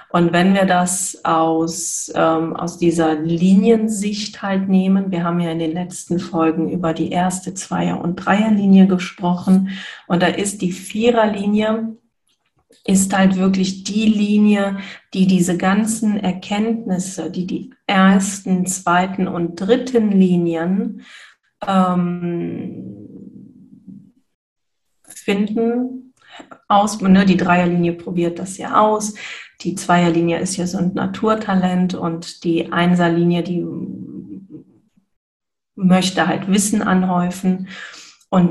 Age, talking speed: 40-59, 115 wpm